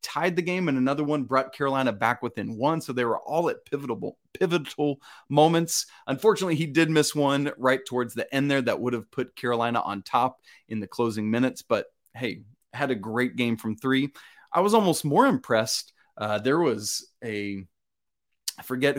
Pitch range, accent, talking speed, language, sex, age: 115-150 Hz, American, 185 wpm, English, male, 30-49